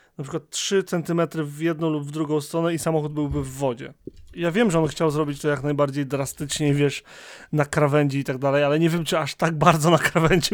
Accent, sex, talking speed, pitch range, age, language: native, male, 230 wpm, 140-165 Hz, 20-39, Polish